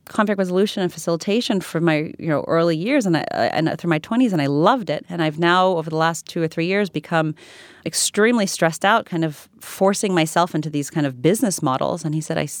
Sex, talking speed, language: female, 230 wpm, English